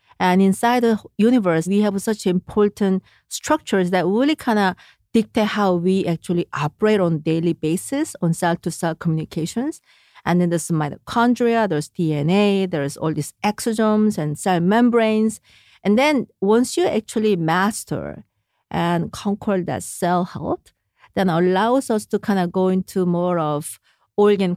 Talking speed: 145 wpm